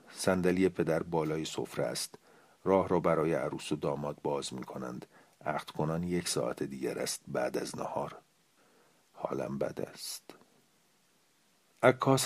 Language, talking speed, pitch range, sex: Persian, 125 wpm, 85-105 Hz, male